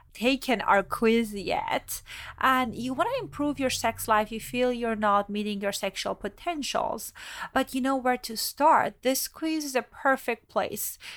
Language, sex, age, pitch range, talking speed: English, female, 30-49, 205-260 Hz, 170 wpm